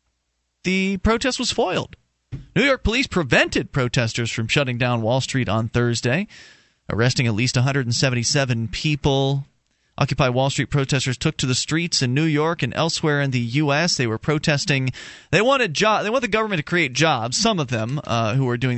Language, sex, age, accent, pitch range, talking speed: English, male, 30-49, American, 115-145 Hz, 180 wpm